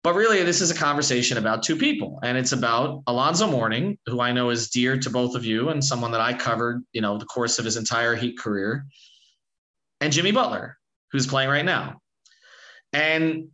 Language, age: English, 30-49